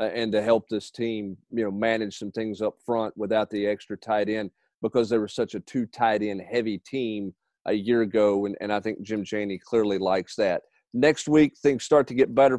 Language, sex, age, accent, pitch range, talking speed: English, male, 40-59, American, 110-130 Hz, 220 wpm